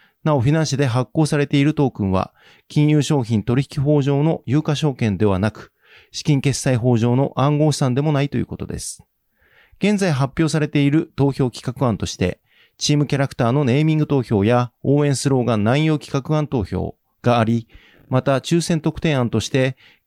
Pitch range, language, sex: 120-150 Hz, Japanese, male